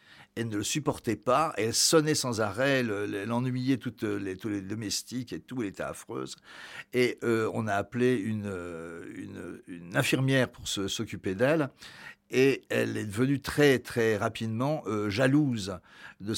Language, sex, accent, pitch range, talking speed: French, male, French, 95-125 Hz, 165 wpm